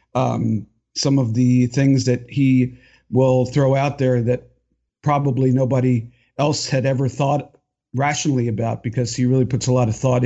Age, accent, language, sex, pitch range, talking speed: 50-69, American, English, male, 125-165 Hz, 165 wpm